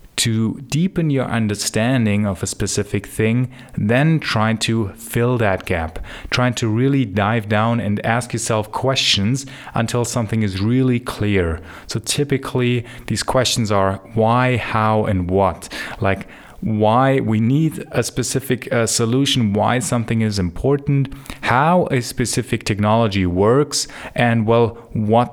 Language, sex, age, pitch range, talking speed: English, male, 30-49, 105-125 Hz, 135 wpm